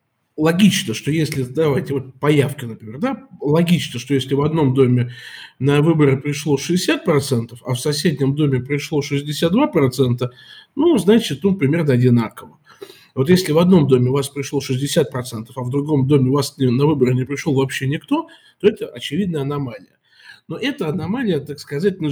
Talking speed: 160 wpm